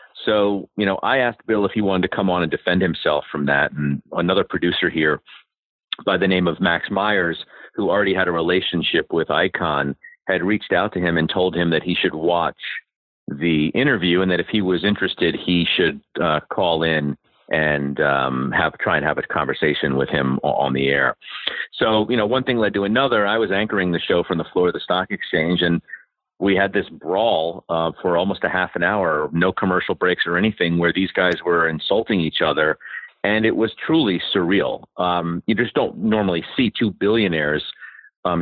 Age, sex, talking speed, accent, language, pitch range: 40-59, male, 205 wpm, American, English, 85-105 Hz